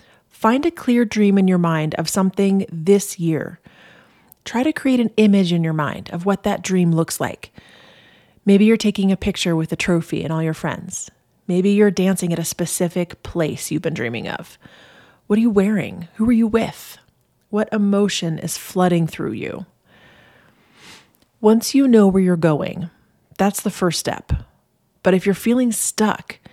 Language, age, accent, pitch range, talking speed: English, 30-49, American, 170-210 Hz, 175 wpm